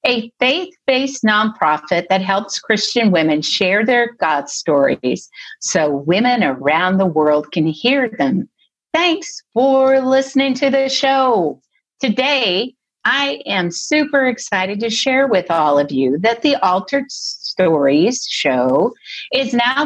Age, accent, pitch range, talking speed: 50-69, American, 170-270 Hz, 130 wpm